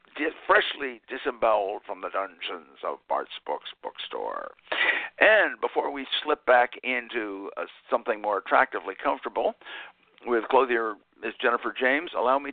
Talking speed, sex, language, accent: 130 wpm, male, English, American